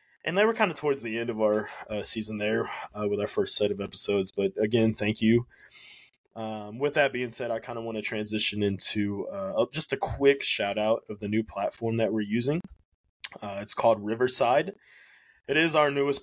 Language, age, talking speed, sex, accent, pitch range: English, 20-39, 210 wpm, male, American, 100-115 Hz